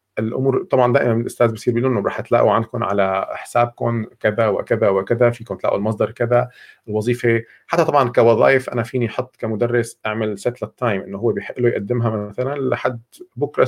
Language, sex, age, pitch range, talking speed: Arabic, male, 40-59, 105-125 Hz, 165 wpm